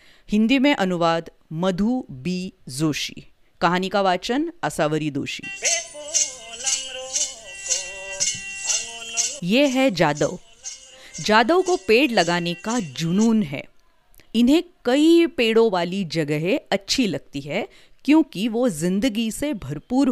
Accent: native